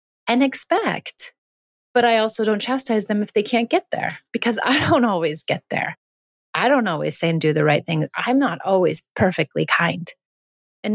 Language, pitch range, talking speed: English, 165-225 Hz, 185 wpm